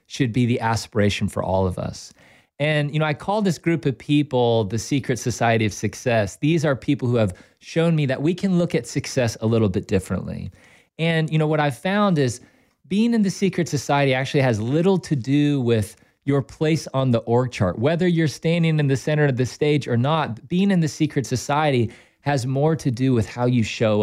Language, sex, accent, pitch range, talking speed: English, male, American, 110-150 Hz, 215 wpm